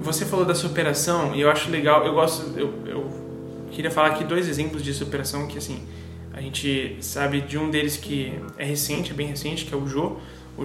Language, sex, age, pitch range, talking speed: Portuguese, male, 20-39, 135-155 Hz, 215 wpm